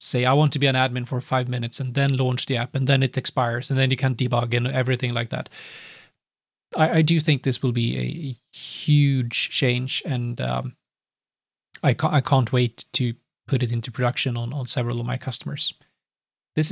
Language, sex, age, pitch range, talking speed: English, male, 30-49, 125-155 Hz, 200 wpm